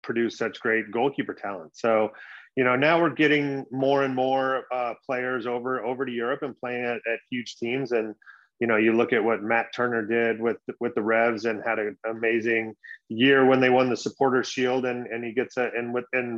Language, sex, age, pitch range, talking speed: English, male, 30-49, 115-125 Hz, 215 wpm